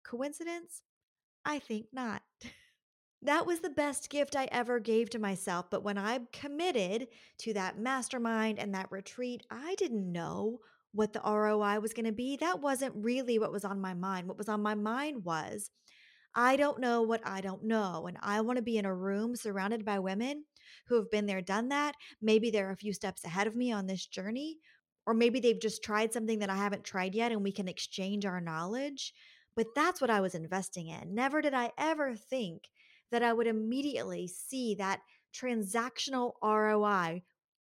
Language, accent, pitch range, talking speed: English, American, 195-240 Hz, 190 wpm